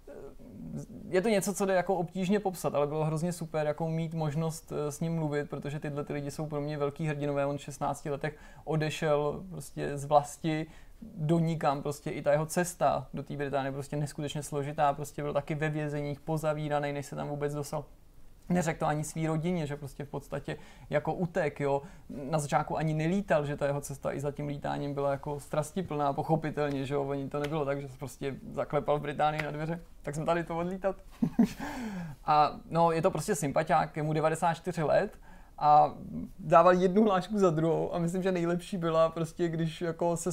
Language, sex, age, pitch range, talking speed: Czech, male, 20-39, 145-165 Hz, 190 wpm